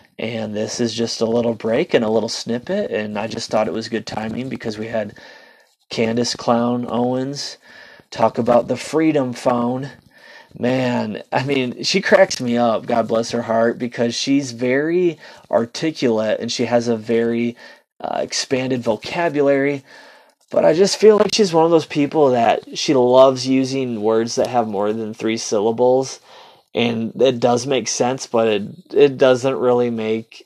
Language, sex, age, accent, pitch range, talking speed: English, male, 20-39, American, 115-130 Hz, 165 wpm